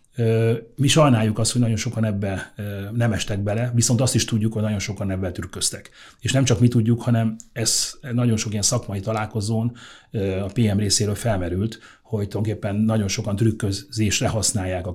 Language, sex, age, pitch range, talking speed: Hungarian, male, 30-49, 100-115 Hz, 170 wpm